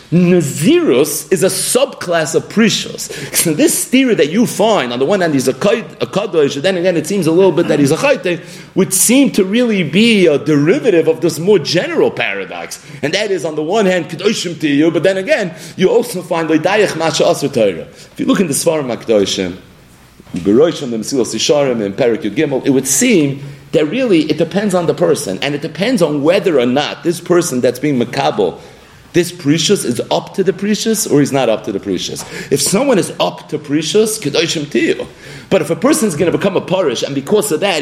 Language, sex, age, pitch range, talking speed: English, male, 40-59, 145-200 Hz, 200 wpm